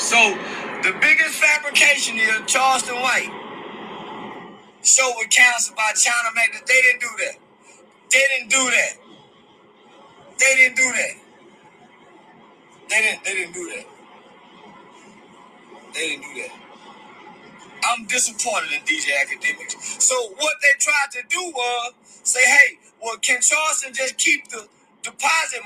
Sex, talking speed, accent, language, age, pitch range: male, 135 wpm, American, English, 30-49, 225-345 Hz